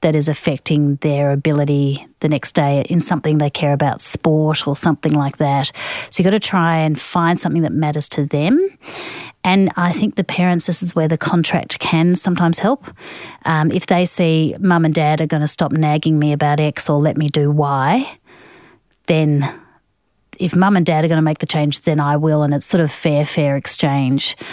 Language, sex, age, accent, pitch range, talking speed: English, female, 30-49, Australian, 150-165 Hz, 205 wpm